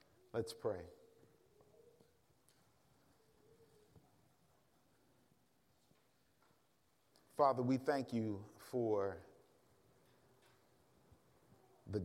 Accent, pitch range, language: American, 110-135 Hz, English